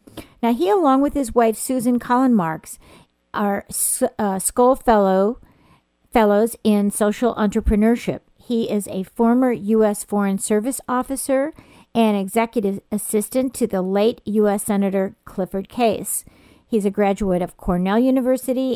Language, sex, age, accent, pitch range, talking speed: English, female, 50-69, American, 195-235 Hz, 130 wpm